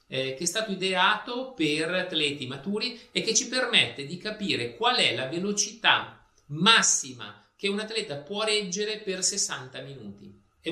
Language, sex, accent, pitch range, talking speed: Italian, male, native, 125-190 Hz, 150 wpm